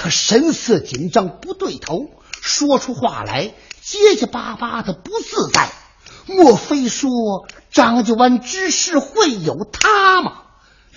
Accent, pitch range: native, 215-325 Hz